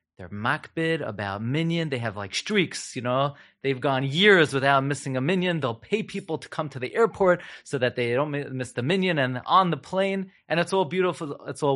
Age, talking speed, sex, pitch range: 30-49, 215 wpm, male, 115-150 Hz